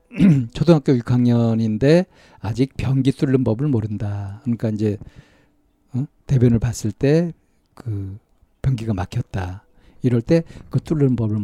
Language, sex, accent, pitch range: Korean, male, native, 110-140 Hz